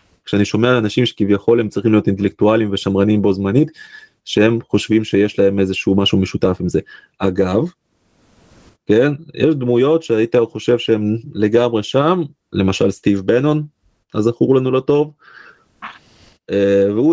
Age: 20-39